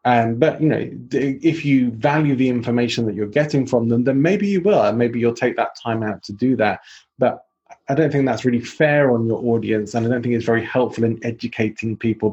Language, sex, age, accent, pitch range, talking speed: English, male, 20-39, British, 110-135 Hz, 235 wpm